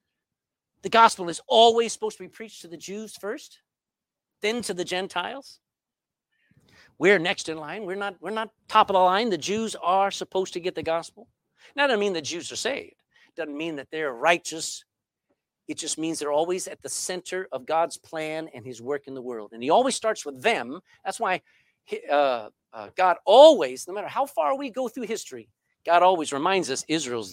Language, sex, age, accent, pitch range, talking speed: English, male, 50-69, American, 155-220 Hz, 205 wpm